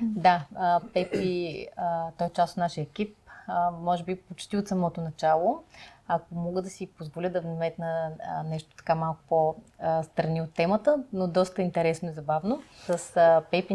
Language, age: Bulgarian, 30-49